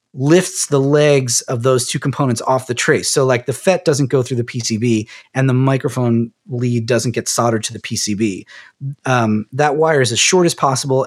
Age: 30-49